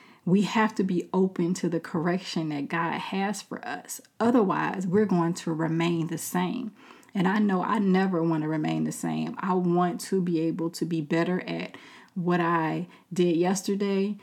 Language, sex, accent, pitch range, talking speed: English, female, American, 165-195 Hz, 180 wpm